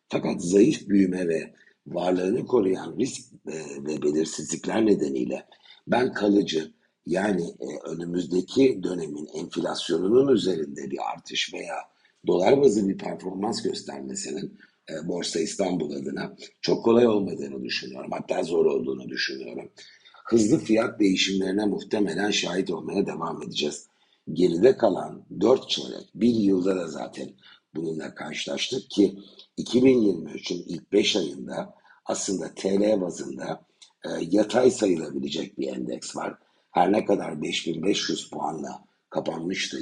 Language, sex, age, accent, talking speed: Turkish, male, 60-79, native, 110 wpm